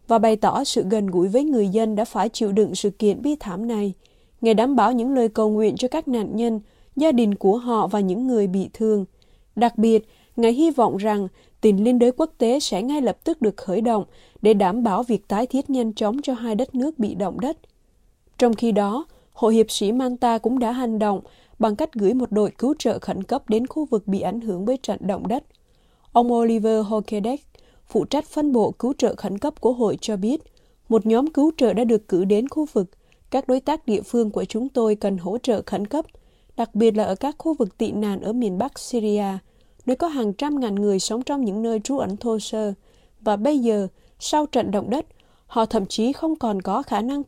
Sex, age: female, 20-39